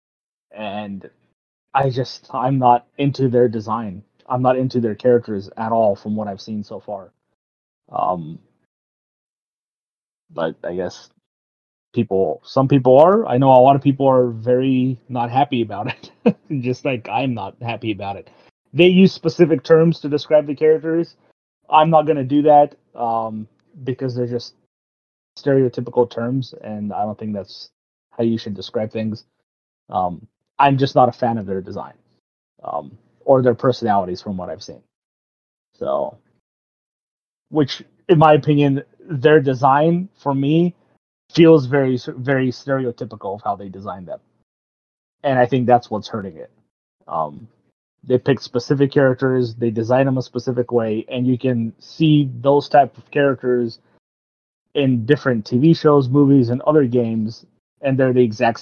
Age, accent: 30-49, American